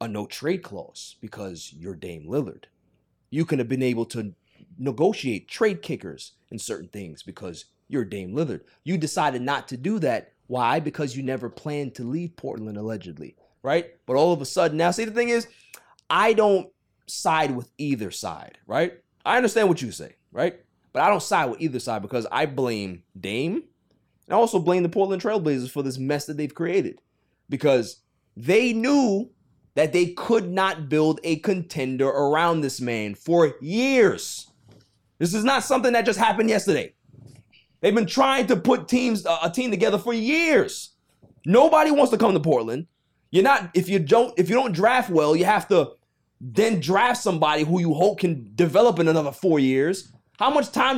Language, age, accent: English, 30-49, American